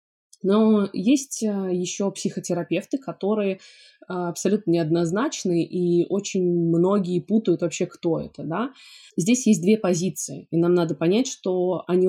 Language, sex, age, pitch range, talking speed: Russian, female, 20-39, 180-225 Hz, 125 wpm